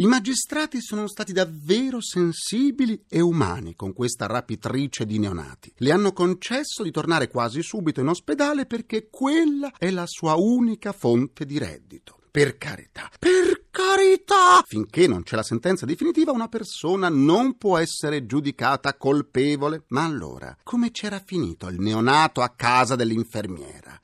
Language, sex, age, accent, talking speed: Italian, male, 40-59, native, 145 wpm